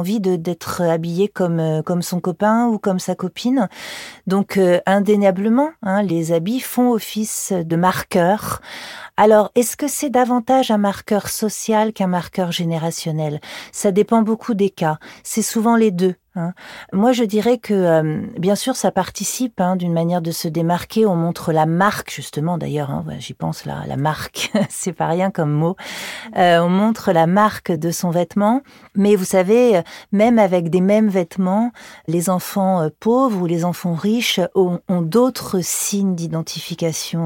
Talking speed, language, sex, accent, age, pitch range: 165 wpm, French, female, French, 40-59, 170-210 Hz